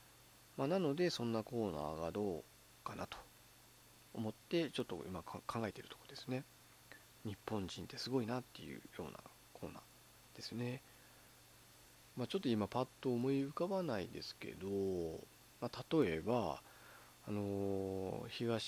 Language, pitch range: Japanese, 95-145 Hz